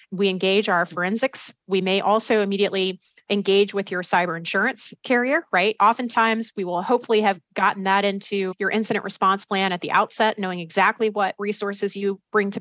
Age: 30-49